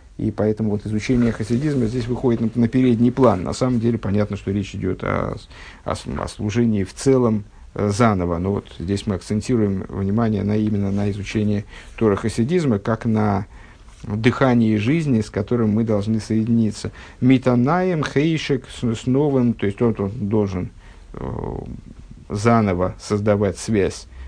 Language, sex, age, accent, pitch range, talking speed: Russian, male, 50-69, native, 100-120 Hz, 150 wpm